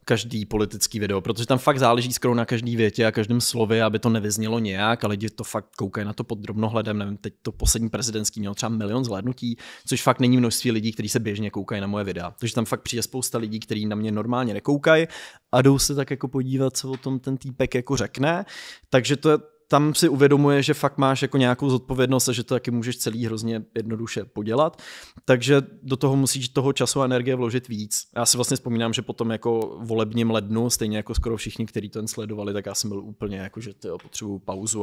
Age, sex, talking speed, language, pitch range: 20-39, male, 220 wpm, Czech, 110-130 Hz